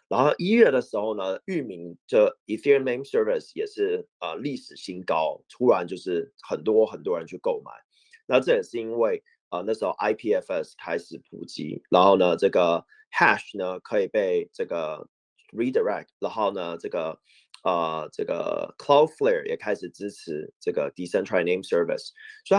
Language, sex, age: Chinese, male, 30-49